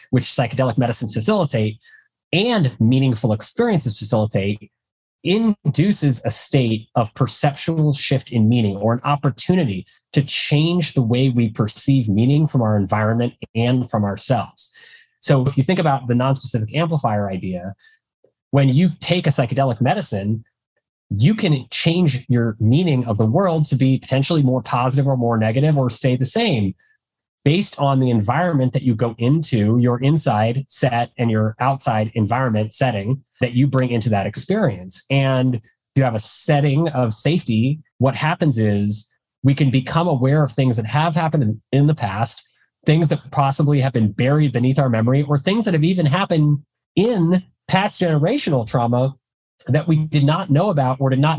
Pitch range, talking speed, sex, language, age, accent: 120-155 Hz, 160 wpm, male, English, 30-49, American